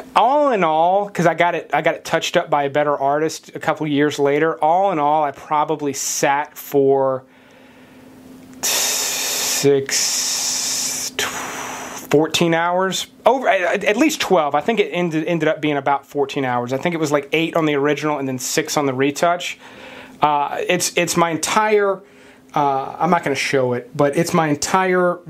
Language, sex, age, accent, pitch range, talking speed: English, male, 30-49, American, 145-210 Hz, 175 wpm